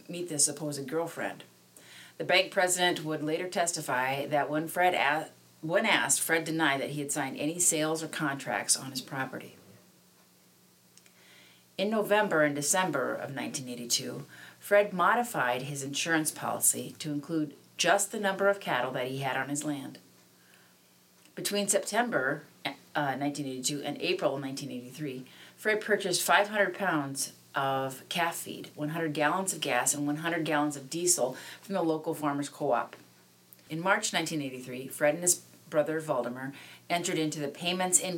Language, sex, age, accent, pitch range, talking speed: English, female, 40-59, American, 130-165 Hz, 145 wpm